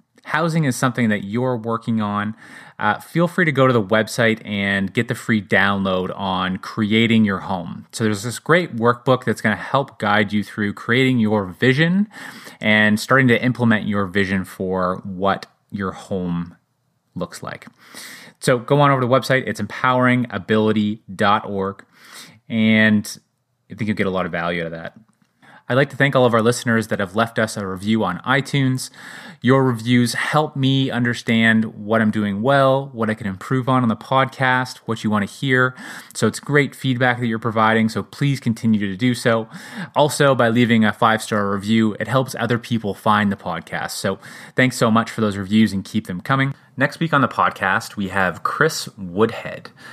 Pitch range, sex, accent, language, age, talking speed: 105-130 Hz, male, American, English, 30-49, 185 wpm